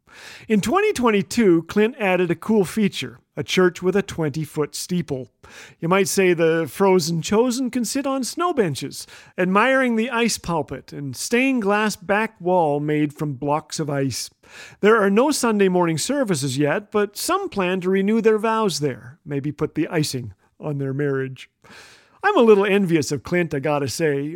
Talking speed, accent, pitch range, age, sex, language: 170 wpm, American, 155-240 Hz, 40-59, male, English